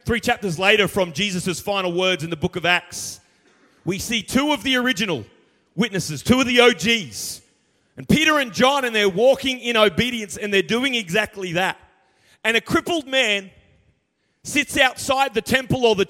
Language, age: English, 30-49